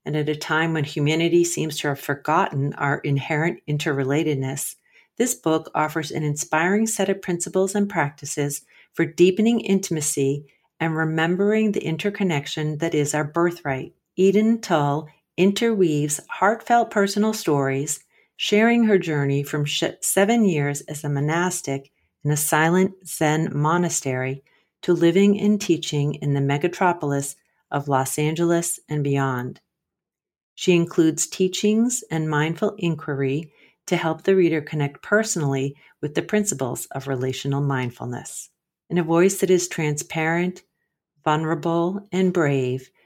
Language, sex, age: English, female, 40-59